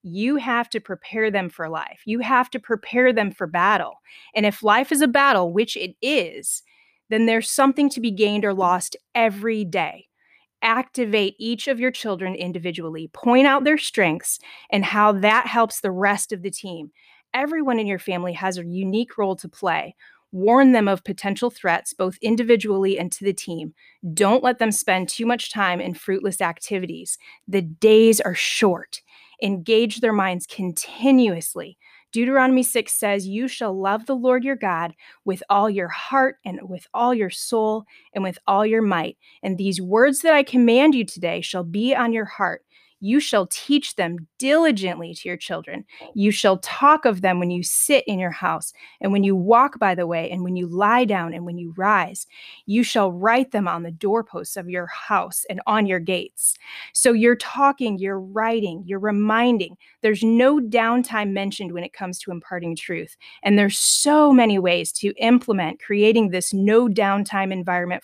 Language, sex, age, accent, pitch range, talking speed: English, female, 30-49, American, 185-235 Hz, 180 wpm